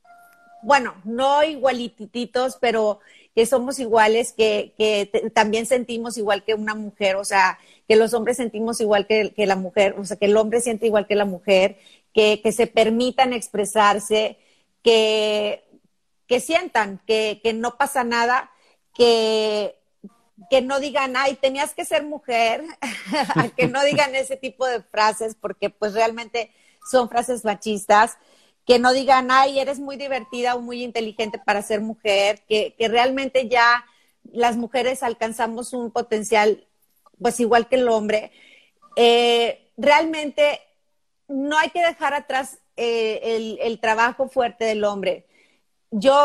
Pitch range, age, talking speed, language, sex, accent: 215-260 Hz, 40-59, 150 wpm, Spanish, female, Mexican